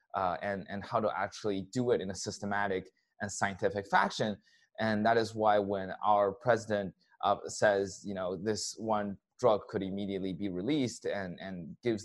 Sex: male